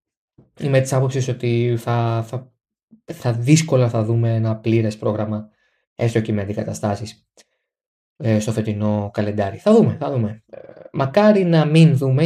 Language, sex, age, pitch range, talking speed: Greek, male, 20-39, 110-135 Hz, 135 wpm